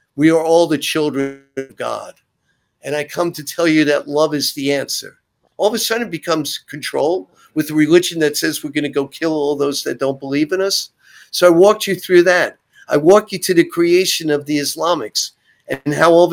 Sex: male